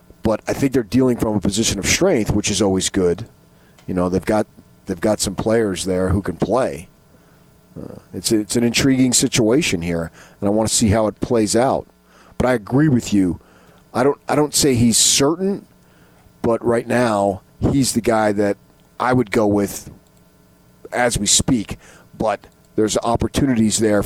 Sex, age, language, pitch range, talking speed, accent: male, 40-59, English, 100-125 Hz, 180 wpm, American